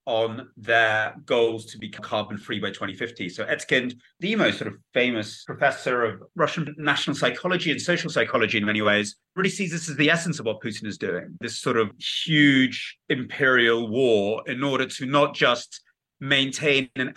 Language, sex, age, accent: English, male, 30-49, British